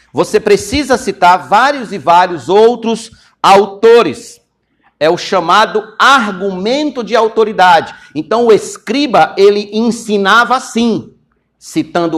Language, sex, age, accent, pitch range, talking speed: Portuguese, male, 60-79, Brazilian, 185-255 Hz, 105 wpm